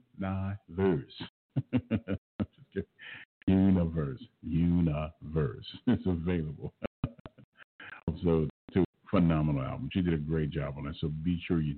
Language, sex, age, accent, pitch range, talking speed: English, male, 50-69, American, 80-95 Hz, 100 wpm